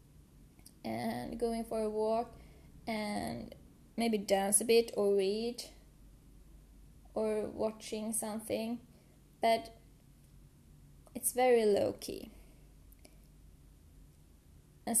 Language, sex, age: English, female, 10-29